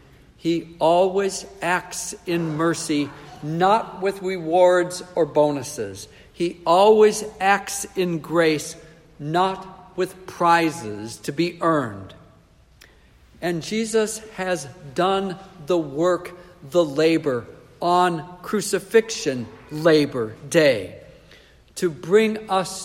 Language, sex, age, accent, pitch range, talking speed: English, male, 60-79, American, 165-215 Hz, 95 wpm